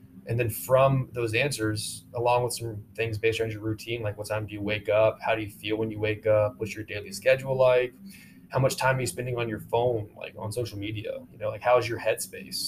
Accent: American